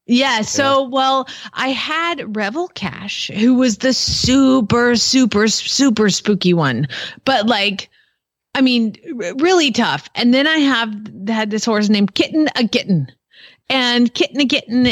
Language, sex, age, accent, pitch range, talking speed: English, female, 30-49, American, 195-270 Hz, 135 wpm